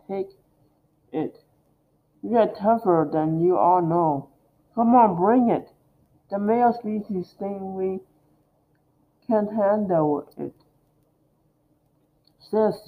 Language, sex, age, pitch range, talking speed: English, male, 50-69, 150-190 Hz, 100 wpm